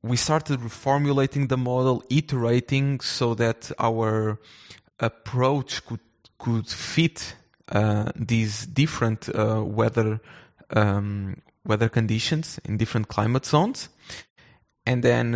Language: English